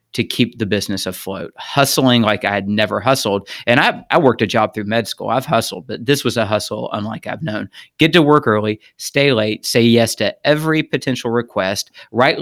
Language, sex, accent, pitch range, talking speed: English, male, American, 105-130 Hz, 210 wpm